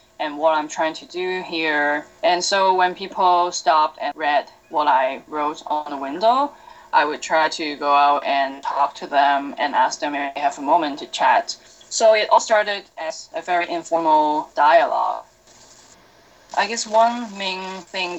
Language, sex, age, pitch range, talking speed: English, female, 10-29, 155-225 Hz, 180 wpm